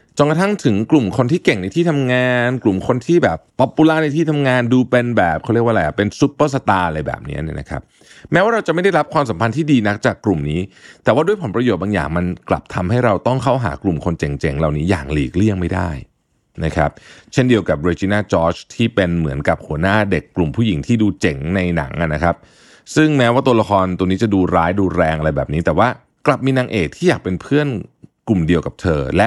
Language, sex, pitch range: Thai, male, 90-135 Hz